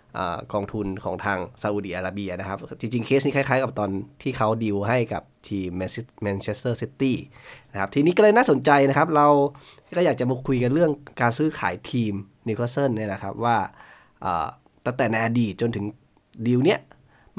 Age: 20-39